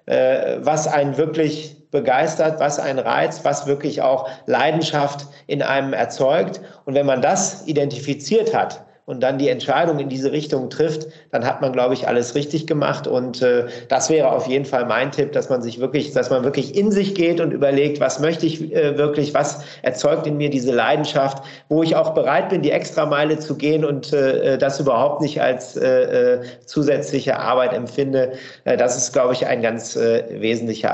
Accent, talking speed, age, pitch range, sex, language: German, 190 wpm, 50-69, 130-155 Hz, male, German